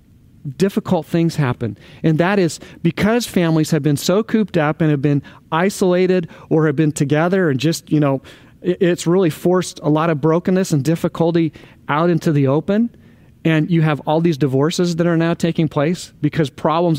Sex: male